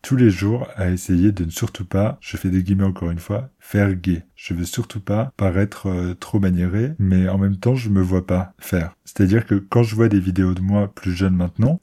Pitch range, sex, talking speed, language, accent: 90-105 Hz, male, 235 wpm, French, French